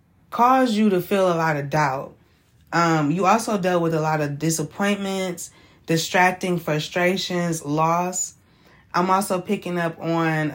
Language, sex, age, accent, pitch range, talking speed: English, female, 20-39, American, 160-195 Hz, 140 wpm